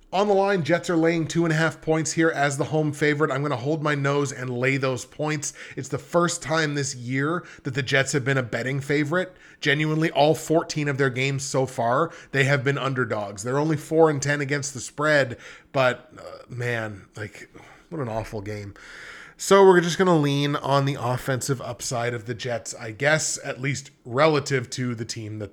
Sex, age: male, 20-39